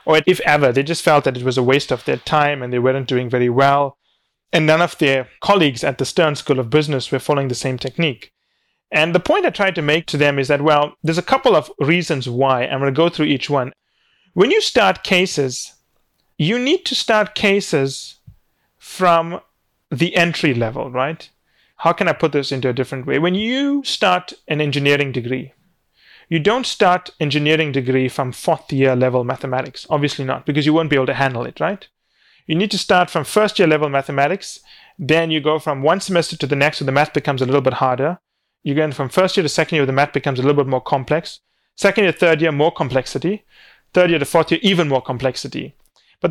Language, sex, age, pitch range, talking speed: English, male, 30-49, 135-170 Hz, 215 wpm